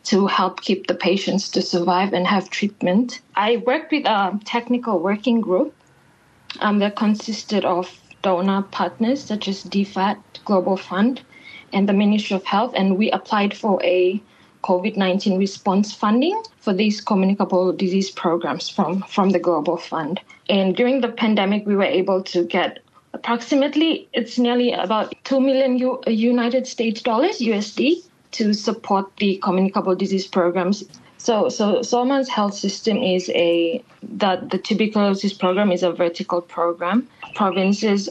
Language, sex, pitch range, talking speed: English, female, 185-220 Hz, 145 wpm